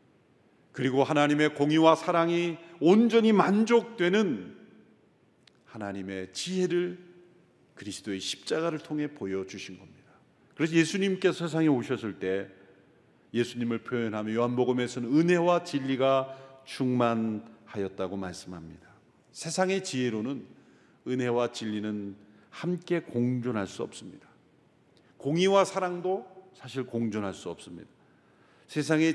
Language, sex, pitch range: Korean, male, 120-185 Hz